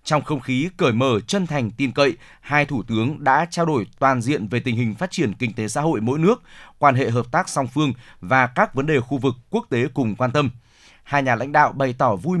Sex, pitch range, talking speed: male, 125-150 Hz, 250 wpm